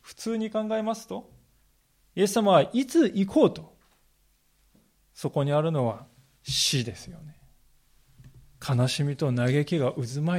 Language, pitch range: Japanese, 130-200 Hz